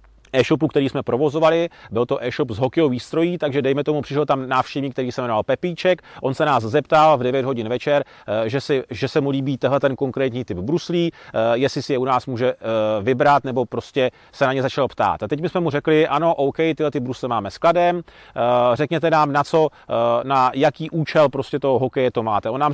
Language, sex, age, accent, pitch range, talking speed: Czech, male, 30-49, native, 130-155 Hz, 210 wpm